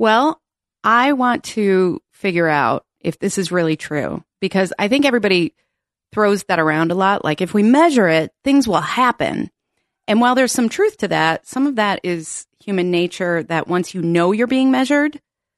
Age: 30-49